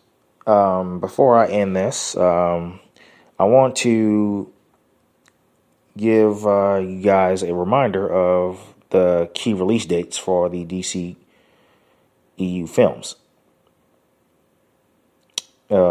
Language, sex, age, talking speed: English, male, 20-39, 100 wpm